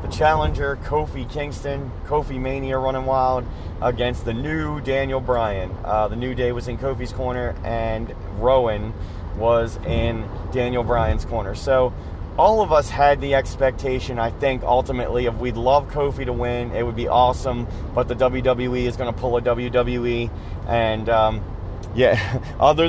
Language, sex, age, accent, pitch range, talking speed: English, male, 30-49, American, 115-130 Hz, 155 wpm